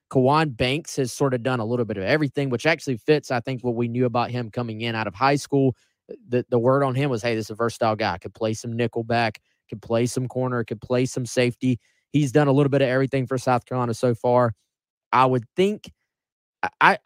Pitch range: 110-135 Hz